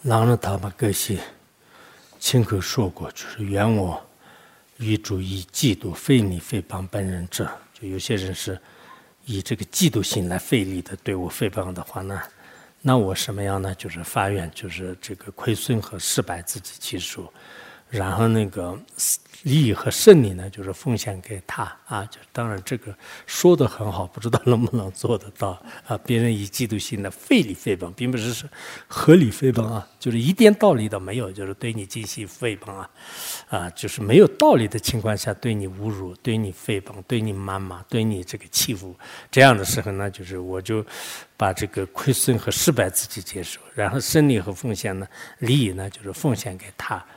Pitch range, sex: 95-125 Hz, male